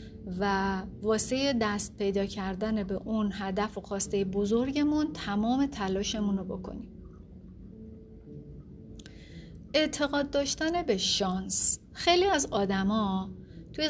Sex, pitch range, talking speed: female, 195-245 Hz, 95 wpm